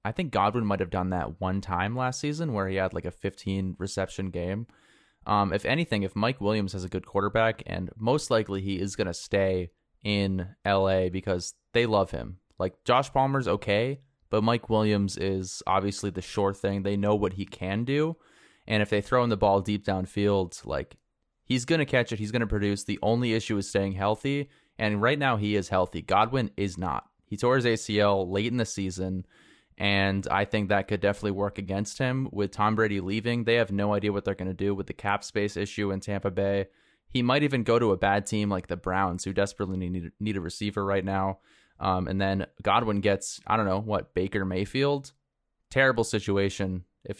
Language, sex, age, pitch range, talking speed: English, male, 20-39, 95-110 Hz, 210 wpm